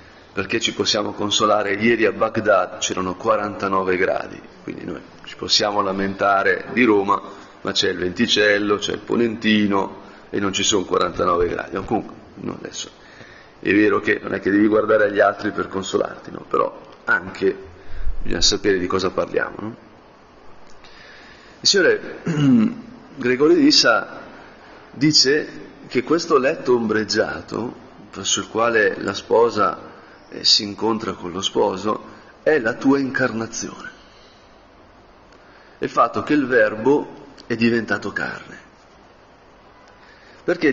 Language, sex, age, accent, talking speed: Italian, male, 40-59, native, 130 wpm